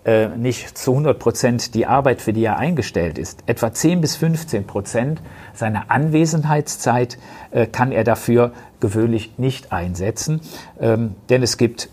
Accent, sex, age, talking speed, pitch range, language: German, male, 50-69, 135 wpm, 100-125 Hz, German